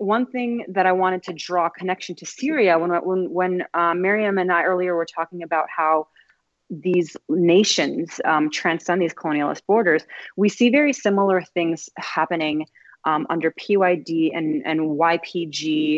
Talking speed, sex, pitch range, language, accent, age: 155 wpm, female, 160-190 Hz, English, American, 30-49